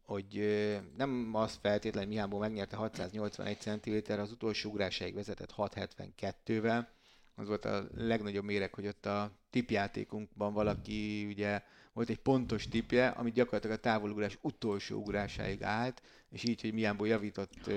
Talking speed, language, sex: 140 wpm, Hungarian, male